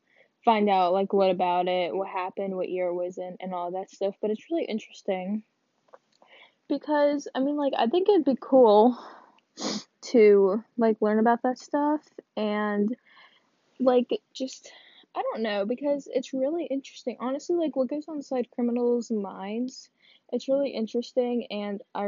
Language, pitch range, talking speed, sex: English, 210-265 Hz, 160 wpm, female